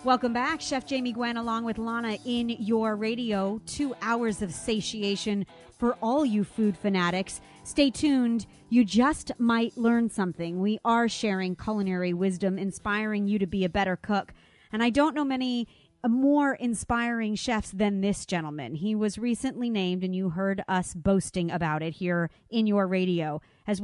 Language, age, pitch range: English, 30-49, 185-230 Hz